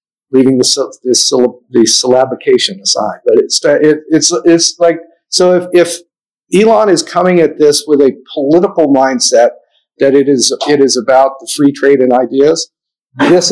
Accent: American